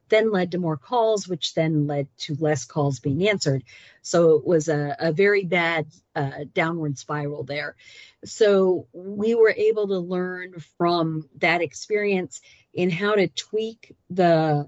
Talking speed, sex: 155 wpm, female